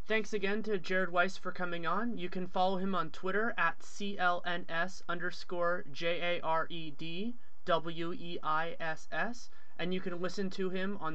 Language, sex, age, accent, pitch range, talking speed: English, male, 30-49, American, 160-190 Hz, 135 wpm